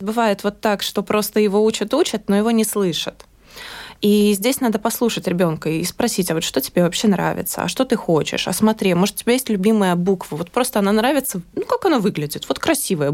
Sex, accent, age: female, native, 20-39